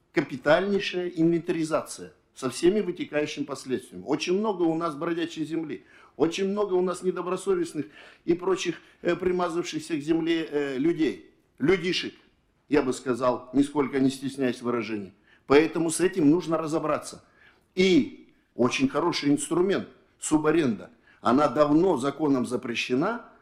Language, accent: Russian, native